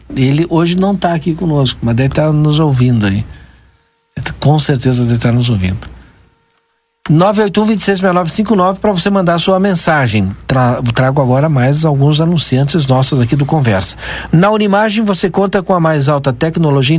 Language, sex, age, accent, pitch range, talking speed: Portuguese, male, 60-79, Brazilian, 140-180 Hz, 165 wpm